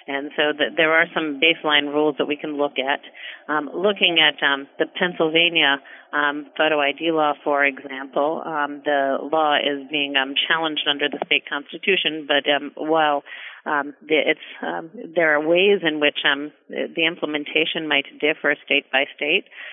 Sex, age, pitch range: female, 40-59, 140-155 Hz